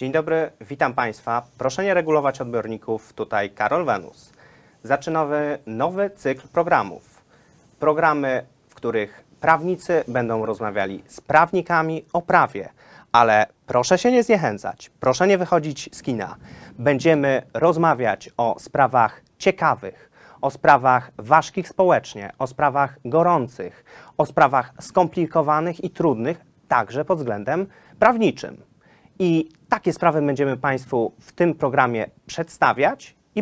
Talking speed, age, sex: 120 wpm, 30-49, male